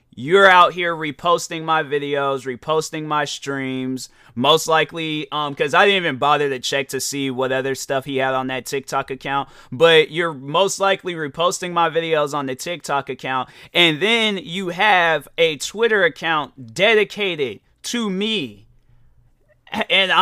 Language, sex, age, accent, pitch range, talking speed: English, male, 30-49, American, 150-240 Hz, 155 wpm